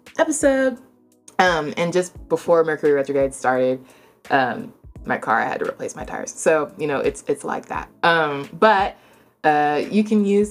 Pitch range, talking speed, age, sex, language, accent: 135-175 Hz, 170 wpm, 20-39, female, English, American